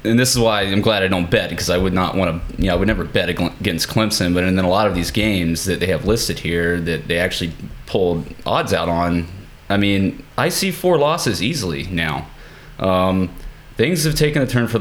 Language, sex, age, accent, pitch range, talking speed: English, male, 20-39, American, 90-110 Hz, 205 wpm